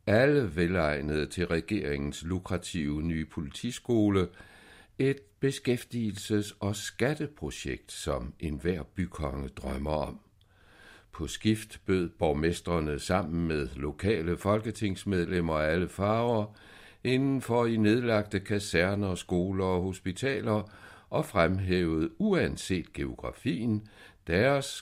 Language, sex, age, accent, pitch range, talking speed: Danish, male, 60-79, native, 80-110 Hz, 105 wpm